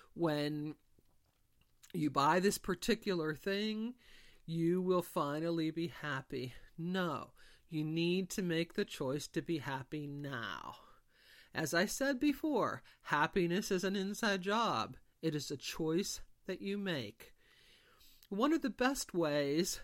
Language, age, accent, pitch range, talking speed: English, 40-59, American, 150-225 Hz, 130 wpm